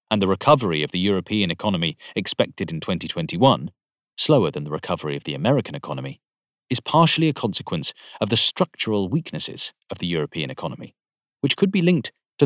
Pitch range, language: 95-135 Hz, English